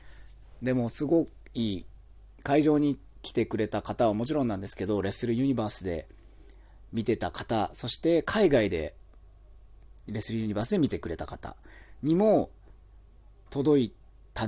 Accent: native